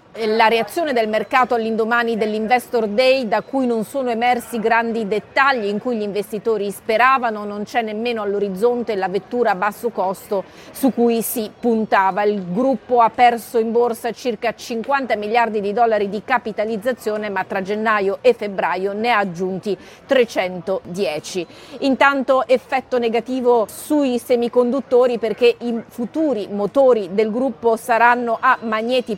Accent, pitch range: native, 215-250 Hz